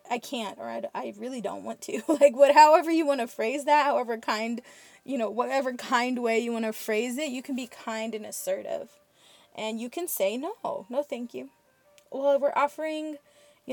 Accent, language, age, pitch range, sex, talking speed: American, English, 20-39, 220-280 Hz, female, 205 wpm